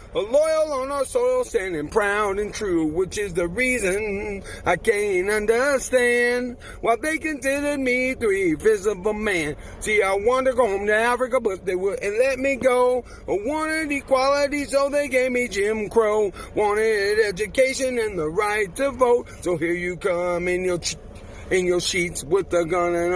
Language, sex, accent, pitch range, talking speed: English, male, American, 205-285 Hz, 170 wpm